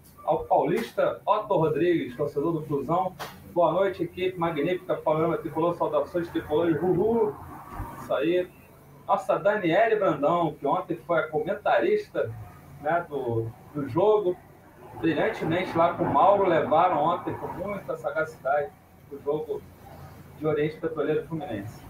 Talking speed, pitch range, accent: 125 wpm, 155-180 Hz, Brazilian